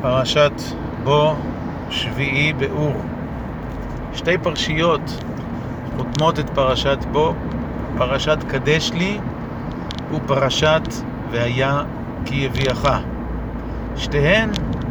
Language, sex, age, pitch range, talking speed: Hebrew, male, 50-69, 125-165 Hz, 70 wpm